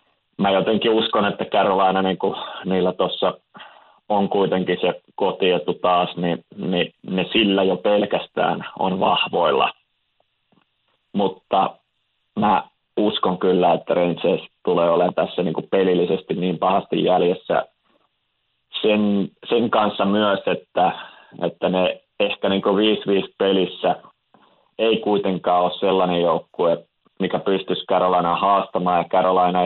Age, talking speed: 30-49, 120 wpm